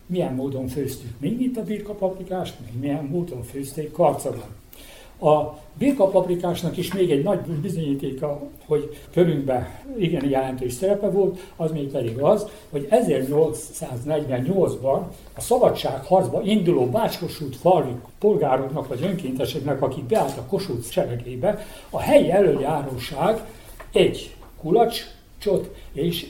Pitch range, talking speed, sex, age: 130-185 Hz, 115 wpm, male, 60-79